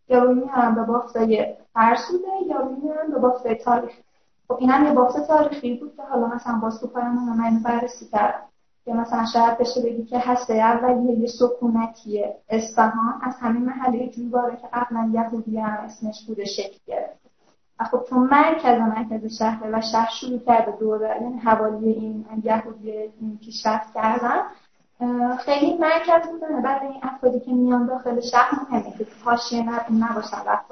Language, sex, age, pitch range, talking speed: Persian, female, 10-29, 225-255 Hz, 160 wpm